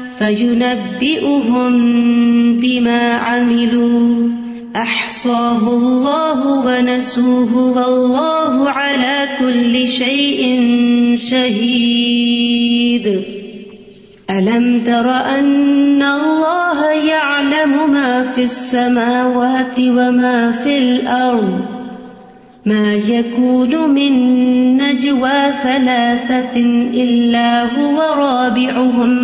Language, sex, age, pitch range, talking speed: Urdu, female, 30-49, 240-275 Hz, 45 wpm